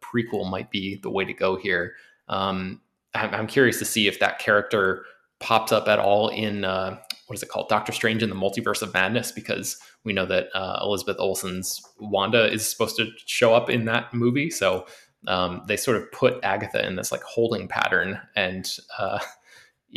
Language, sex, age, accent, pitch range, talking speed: English, male, 20-39, American, 105-125 Hz, 190 wpm